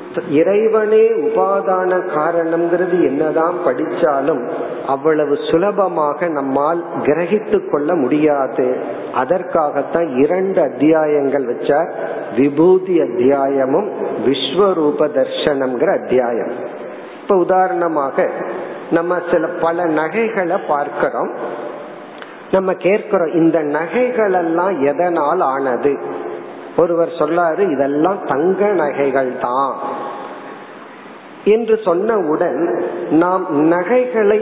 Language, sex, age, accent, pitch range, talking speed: Tamil, male, 50-69, native, 155-200 Hz, 65 wpm